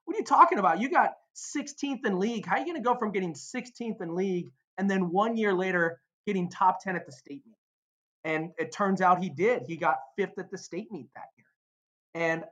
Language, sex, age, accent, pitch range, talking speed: English, male, 20-39, American, 155-190 Hz, 235 wpm